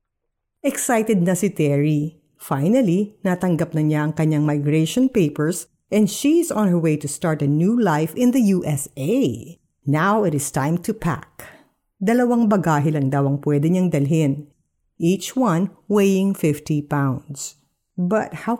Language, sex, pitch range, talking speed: Filipino, female, 150-220 Hz, 150 wpm